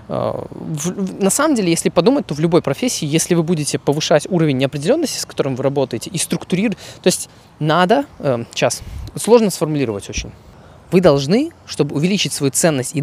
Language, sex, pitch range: Russian, male, 135-180 Hz